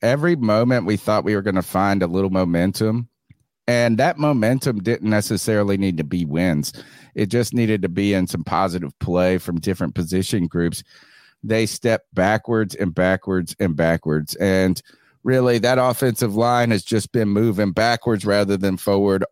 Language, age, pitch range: English, 40-59, 100-120 Hz